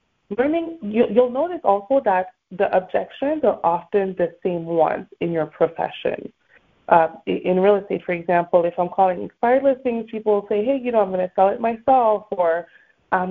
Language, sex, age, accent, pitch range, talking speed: English, female, 30-49, American, 180-225 Hz, 180 wpm